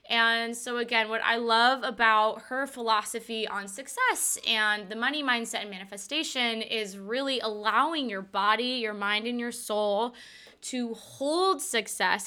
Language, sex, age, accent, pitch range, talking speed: English, female, 10-29, American, 215-255 Hz, 145 wpm